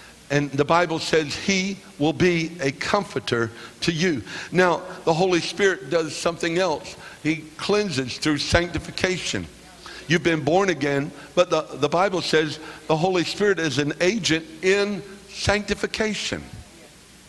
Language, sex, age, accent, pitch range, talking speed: English, male, 60-79, American, 160-200 Hz, 135 wpm